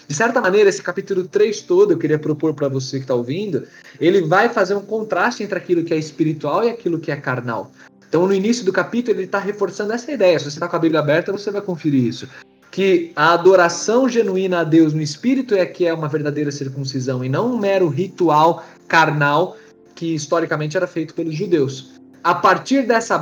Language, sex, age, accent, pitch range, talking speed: Portuguese, male, 20-39, Brazilian, 150-200 Hz, 205 wpm